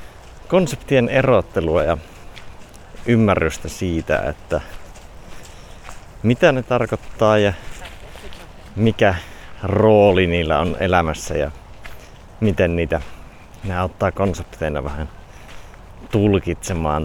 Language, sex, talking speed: Finnish, male, 80 wpm